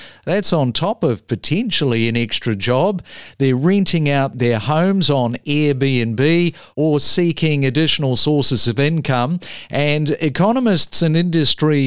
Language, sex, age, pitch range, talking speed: English, male, 50-69, 135-170 Hz, 125 wpm